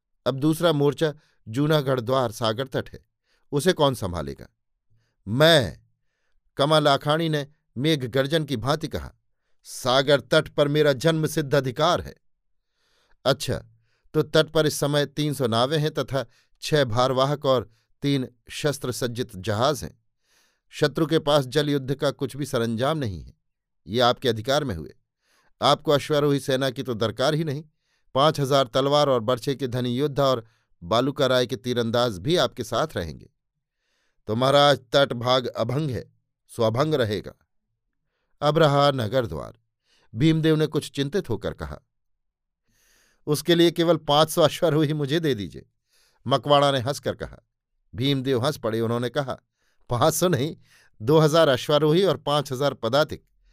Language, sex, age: Hindi, male, 50-69